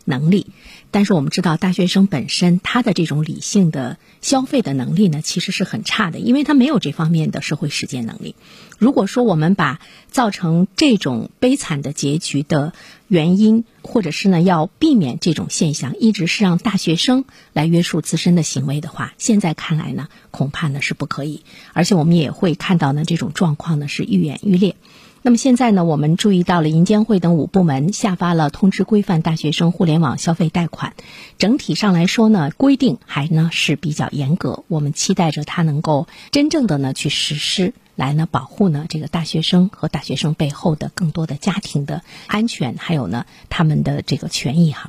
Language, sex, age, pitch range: Chinese, female, 50-69, 155-205 Hz